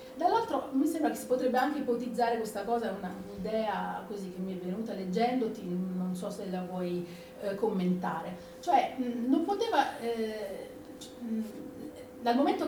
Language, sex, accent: Italian, female, native